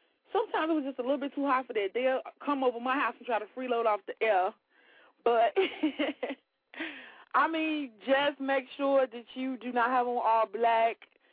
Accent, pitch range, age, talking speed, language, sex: American, 225-285 Hz, 20-39, 195 wpm, English, female